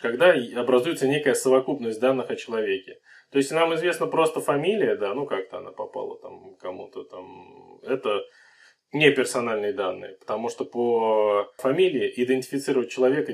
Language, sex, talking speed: Russian, male, 140 wpm